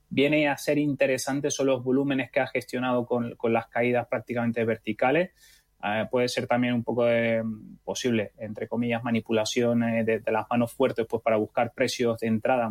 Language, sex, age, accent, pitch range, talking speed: Spanish, male, 20-39, Spanish, 115-135 Hz, 180 wpm